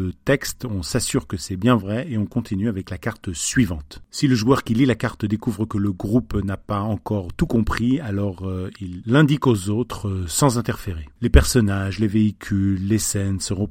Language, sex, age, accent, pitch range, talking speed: French, male, 40-59, French, 100-120 Hz, 200 wpm